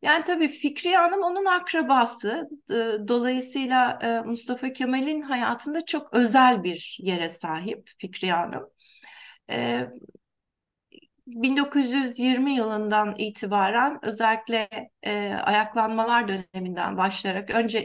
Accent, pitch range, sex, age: native, 205-290 Hz, female, 60-79